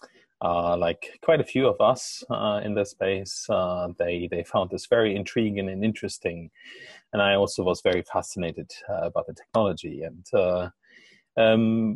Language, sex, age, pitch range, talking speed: English, male, 30-49, 90-110 Hz, 165 wpm